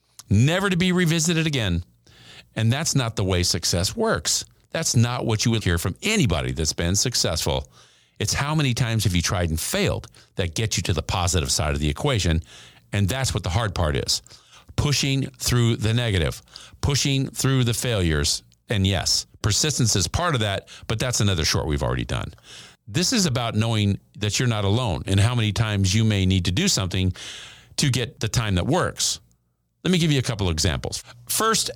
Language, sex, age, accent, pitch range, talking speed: English, male, 50-69, American, 95-135 Hz, 195 wpm